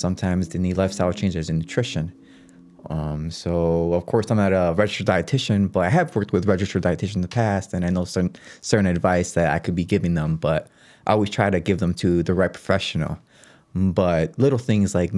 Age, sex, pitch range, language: 20-39, male, 85-105 Hz, English